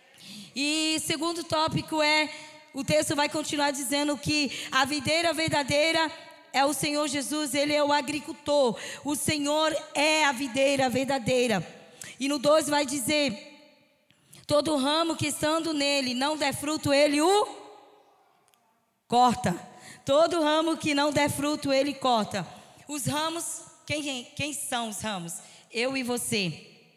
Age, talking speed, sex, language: 20-39, 135 wpm, female, Portuguese